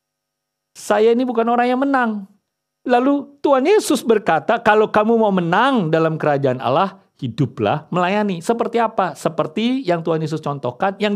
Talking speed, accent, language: 145 wpm, Indonesian, English